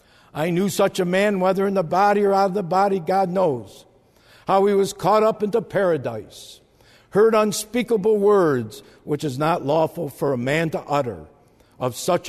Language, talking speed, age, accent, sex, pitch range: English, 180 wpm, 60-79, American, male, 130-180 Hz